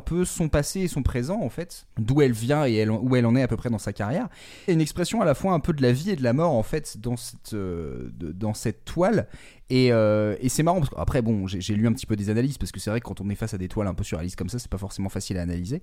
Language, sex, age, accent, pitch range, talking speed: French, male, 30-49, French, 115-175 Hz, 325 wpm